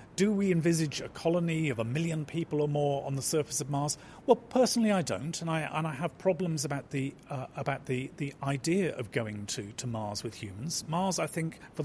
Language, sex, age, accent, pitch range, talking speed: English, male, 40-59, British, 115-155 Hz, 225 wpm